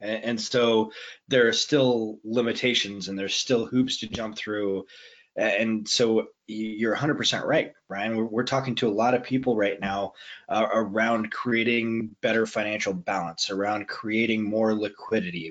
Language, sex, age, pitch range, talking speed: English, male, 20-39, 100-120 Hz, 145 wpm